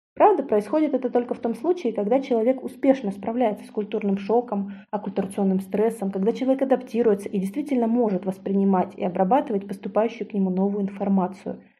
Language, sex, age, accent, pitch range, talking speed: Russian, female, 20-39, native, 200-255 Hz, 155 wpm